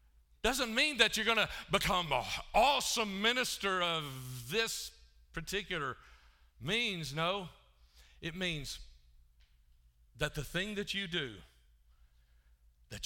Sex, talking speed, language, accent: male, 110 wpm, English, American